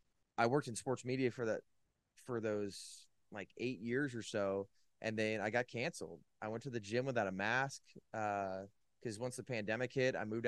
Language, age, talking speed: English, 20-39, 200 wpm